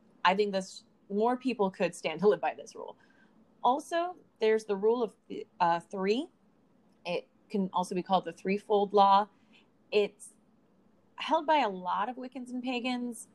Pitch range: 195-250 Hz